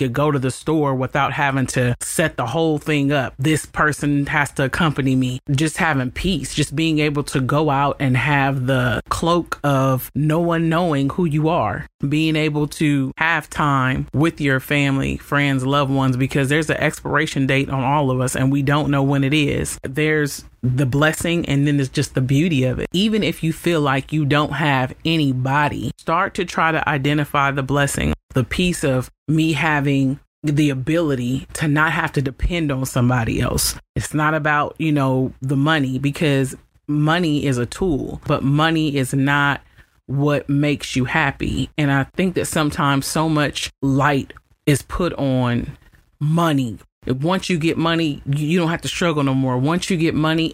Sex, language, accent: male, English, American